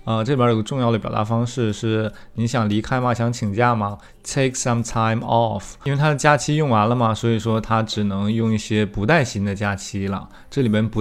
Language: Chinese